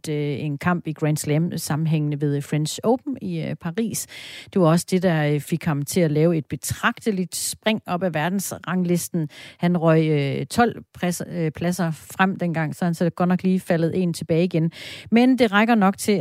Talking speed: 180 wpm